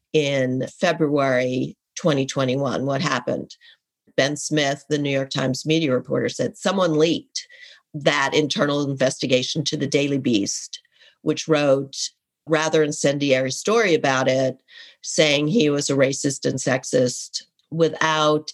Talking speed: 125 wpm